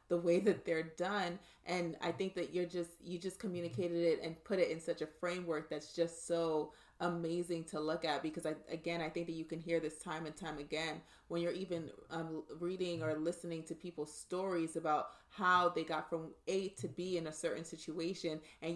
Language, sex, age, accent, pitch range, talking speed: English, female, 30-49, American, 155-175 Hz, 210 wpm